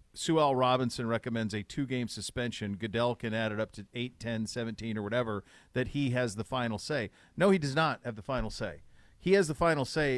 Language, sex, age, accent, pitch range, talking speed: English, male, 40-59, American, 120-170 Hz, 220 wpm